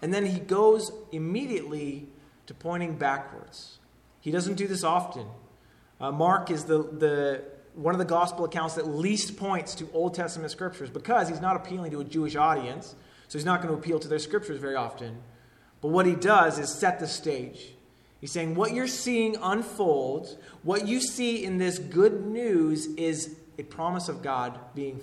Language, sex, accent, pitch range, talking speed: English, male, American, 145-190 Hz, 180 wpm